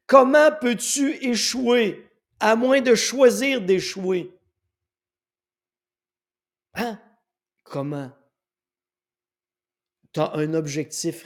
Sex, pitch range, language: male, 180-230 Hz, French